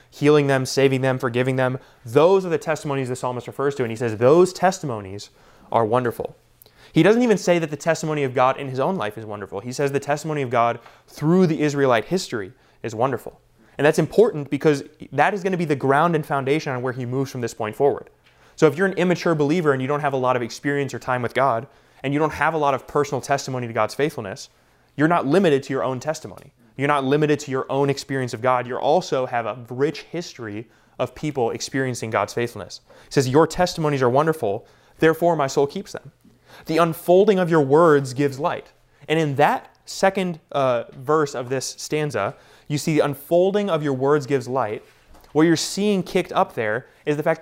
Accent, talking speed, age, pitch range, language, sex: American, 215 wpm, 20-39, 125-155 Hz, English, male